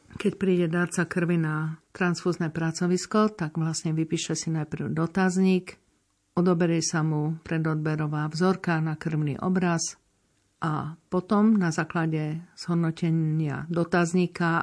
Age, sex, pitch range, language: 50-69, female, 155-175 Hz, Slovak